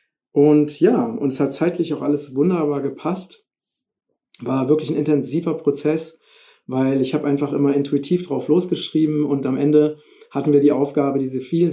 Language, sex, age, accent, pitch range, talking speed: German, male, 50-69, German, 130-150 Hz, 160 wpm